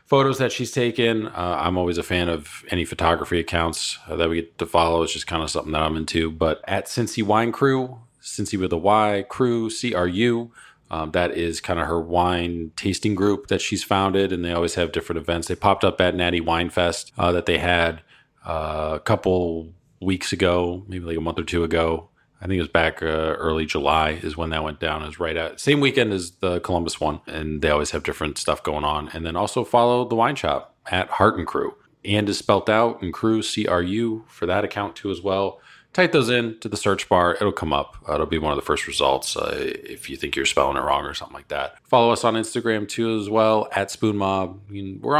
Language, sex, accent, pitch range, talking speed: English, male, American, 85-110 Hz, 230 wpm